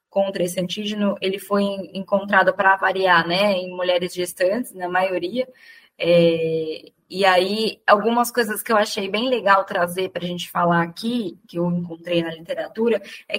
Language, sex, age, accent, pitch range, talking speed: Portuguese, female, 10-29, Brazilian, 180-225 Hz, 160 wpm